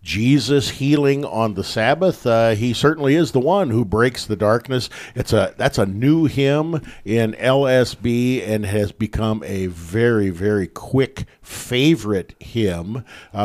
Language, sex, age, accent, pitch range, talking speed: English, male, 50-69, American, 100-125 Hz, 145 wpm